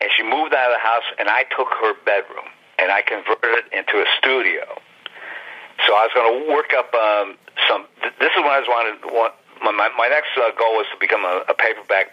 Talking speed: 235 wpm